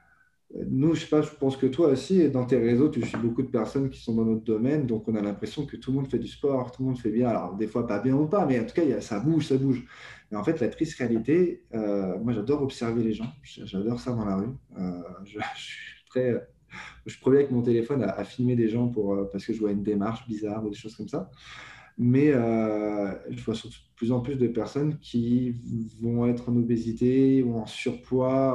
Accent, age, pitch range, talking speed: French, 20-39, 110-125 Hz, 250 wpm